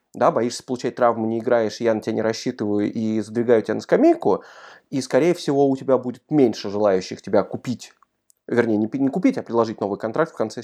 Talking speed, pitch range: 195 wpm, 115-155 Hz